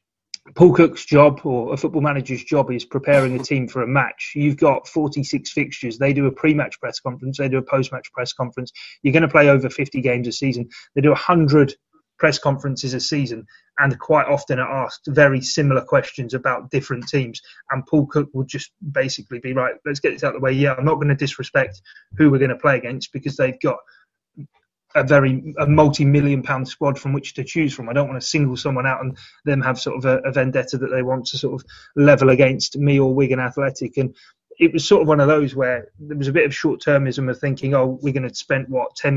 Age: 30-49